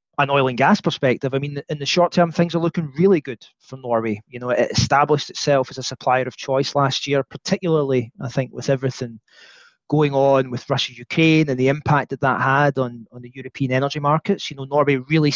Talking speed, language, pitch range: 220 wpm, English, 130-165 Hz